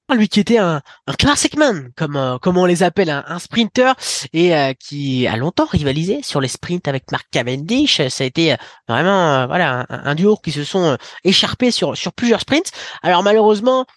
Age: 20-39